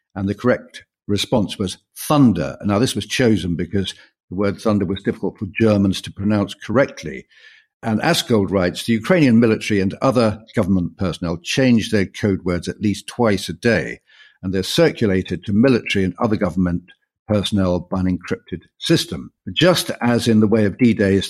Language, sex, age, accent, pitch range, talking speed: English, male, 50-69, British, 95-115 Hz, 170 wpm